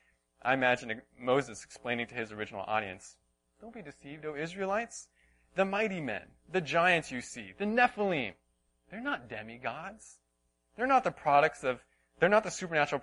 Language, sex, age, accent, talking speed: English, male, 20-39, American, 160 wpm